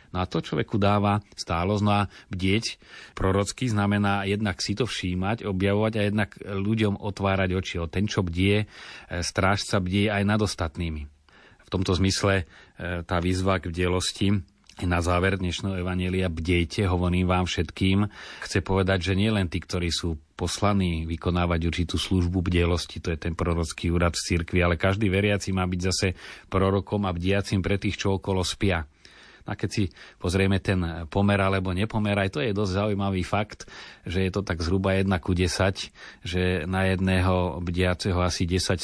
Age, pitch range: 30-49, 90-100 Hz